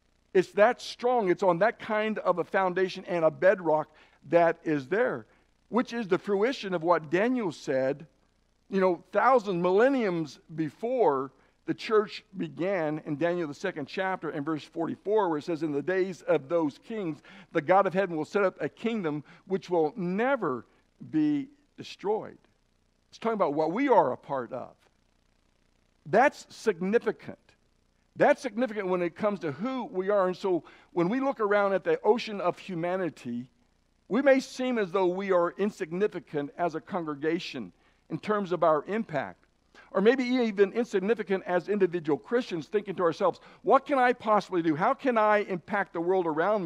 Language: English